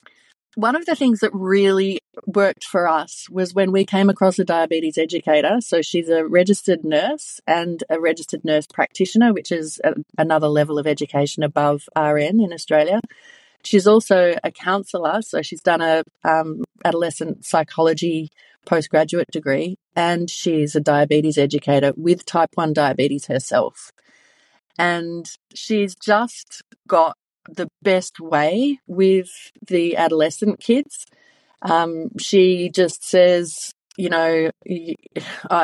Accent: Australian